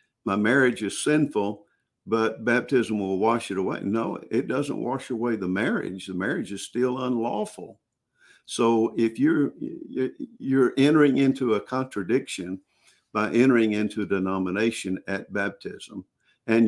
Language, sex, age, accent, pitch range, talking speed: English, male, 50-69, American, 95-115 Hz, 135 wpm